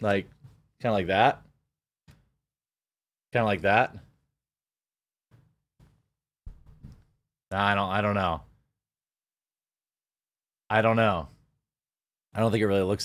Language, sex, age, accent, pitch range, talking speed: English, male, 30-49, American, 105-140 Hz, 100 wpm